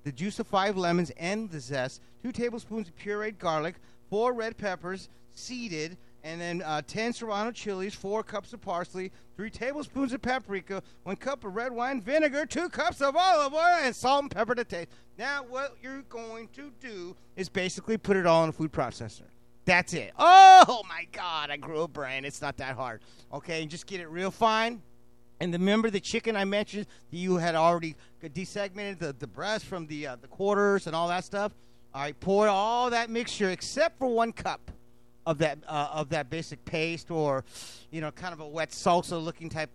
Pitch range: 145-210 Hz